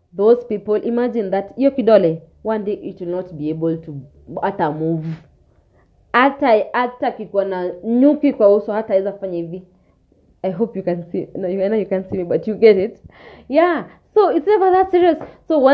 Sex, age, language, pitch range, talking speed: female, 20-39, English, 175-270 Hz, 140 wpm